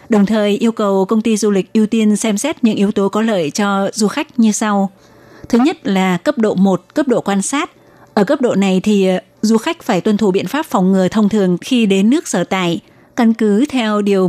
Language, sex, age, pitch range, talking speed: Vietnamese, female, 20-39, 190-230 Hz, 240 wpm